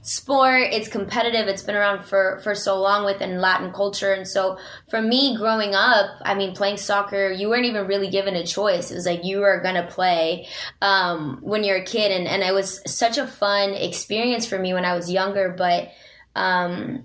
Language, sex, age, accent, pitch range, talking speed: English, female, 20-39, American, 185-210 Hz, 205 wpm